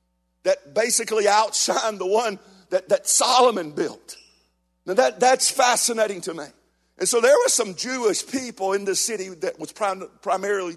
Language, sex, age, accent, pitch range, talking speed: English, male, 50-69, American, 115-190 Hz, 160 wpm